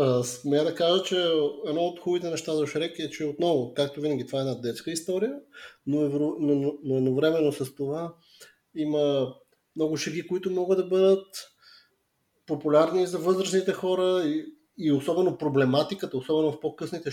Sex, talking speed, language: male, 160 wpm, Bulgarian